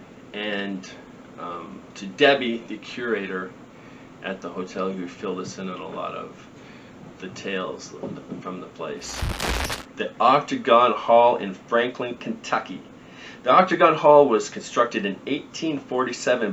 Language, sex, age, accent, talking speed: English, male, 40-59, American, 125 wpm